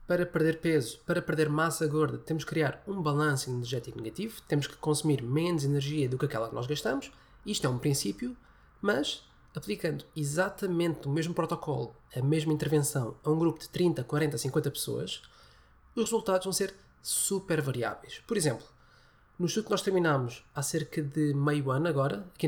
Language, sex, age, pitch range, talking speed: English, male, 20-39, 140-170 Hz, 175 wpm